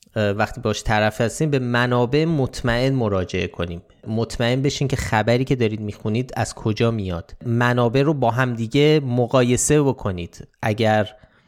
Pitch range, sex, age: 105-135 Hz, male, 20-39